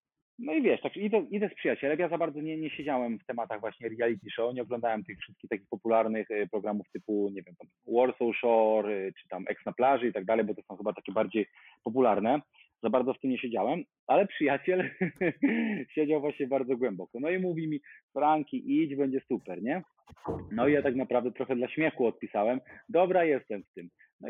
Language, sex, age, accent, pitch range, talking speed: Polish, male, 30-49, native, 115-150 Hz, 205 wpm